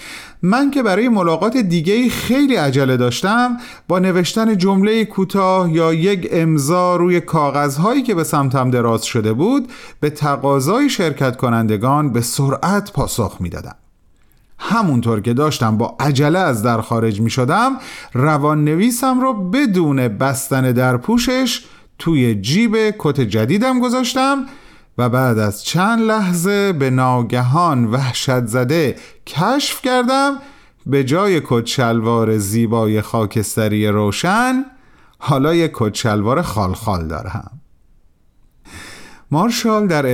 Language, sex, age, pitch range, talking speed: Persian, male, 40-59, 120-205 Hz, 110 wpm